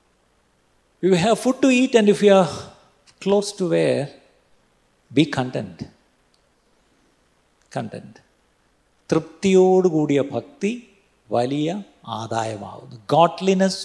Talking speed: 100 wpm